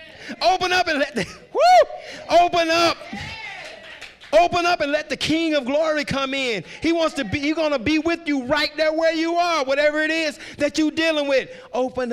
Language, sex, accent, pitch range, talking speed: English, male, American, 220-300 Hz, 205 wpm